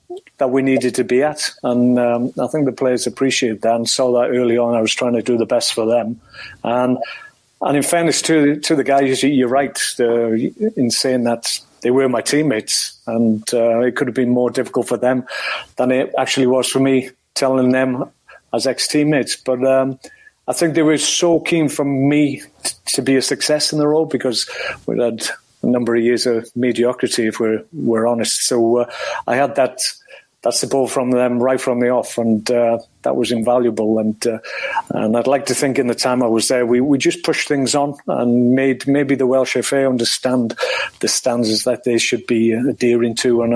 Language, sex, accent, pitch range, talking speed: English, male, British, 120-135 Hz, 210 wpm